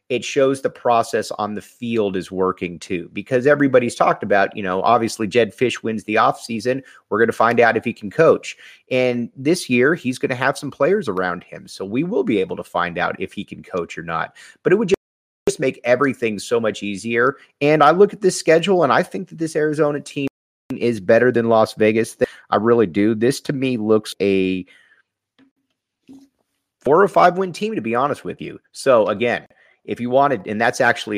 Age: 30-49